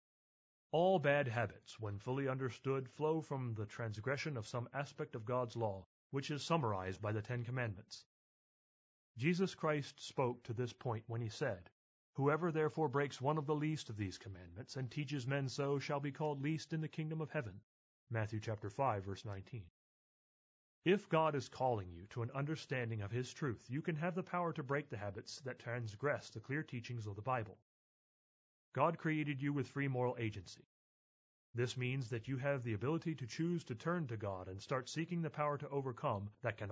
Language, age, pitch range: English, 30-49, 110-150 Hz